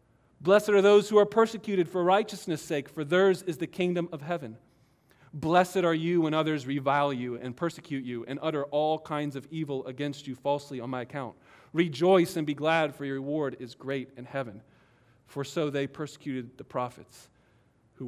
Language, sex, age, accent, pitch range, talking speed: English, male, 40-59, American, 130-185 Hz, 185 wpm